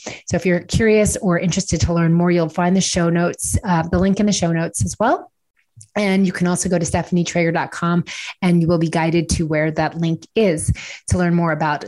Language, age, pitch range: English, 30-49, 170-205 Hz